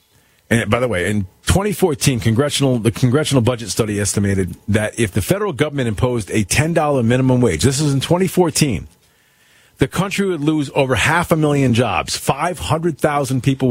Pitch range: 120-185 Hz